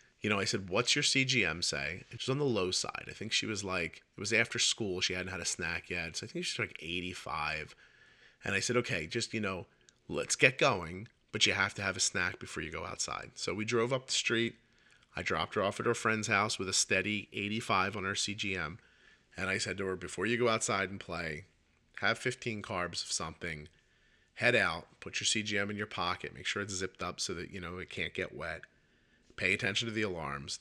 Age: 30-49